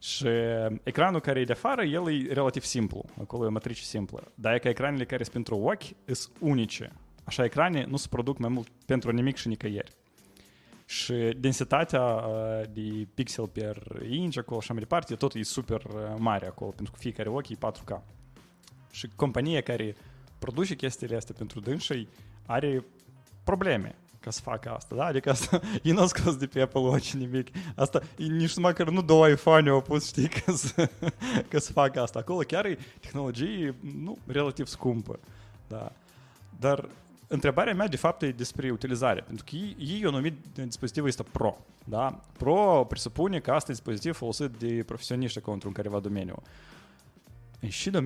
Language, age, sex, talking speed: English, 20-39, male, 155 wpm